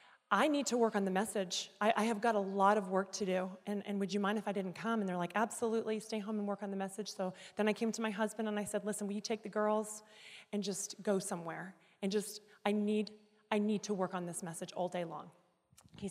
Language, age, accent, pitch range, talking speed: English, 30-49, American, 200-245 Hz, 265 wpm